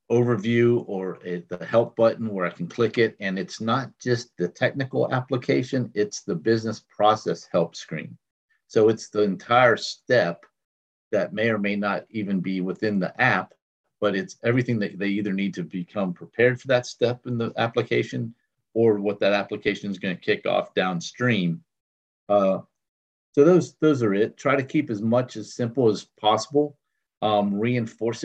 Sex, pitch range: male, 95-120 Hz